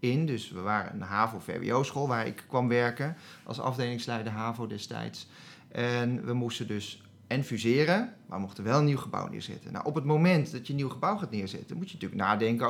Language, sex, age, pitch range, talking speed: Dutch, male, 40-59, 115-155 Hz, 200 wpm